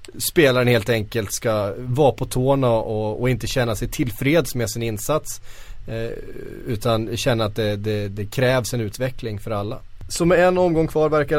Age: 30-49